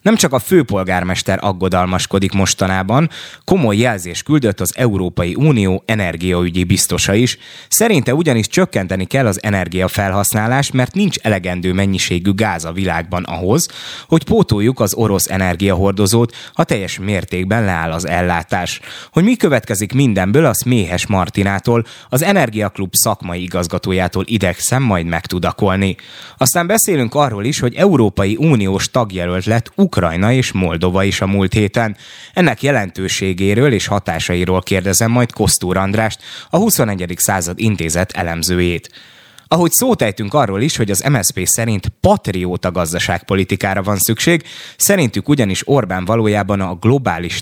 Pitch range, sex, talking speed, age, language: 95-120 Hz, male, 130 wpm, 20-39, Hungarian